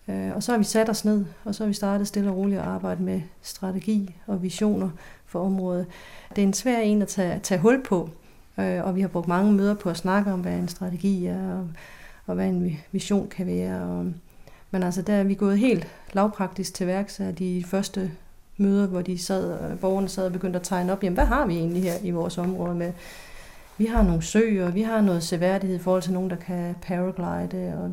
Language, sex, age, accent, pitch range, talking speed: Danish, female, 40-59, native, 180-205 Hz, 225 wpm